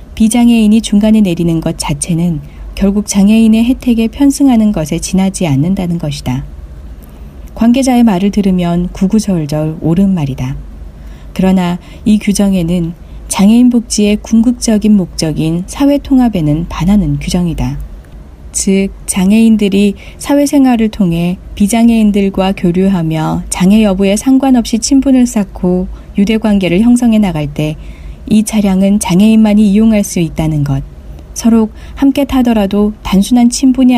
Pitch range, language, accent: 165-220 Hz, Korean, native